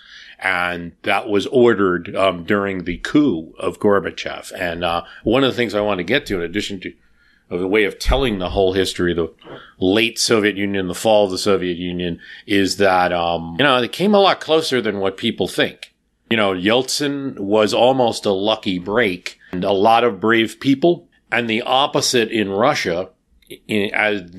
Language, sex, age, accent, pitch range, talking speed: English, male, 40-59, American, 90-110 Hz, 190 wpm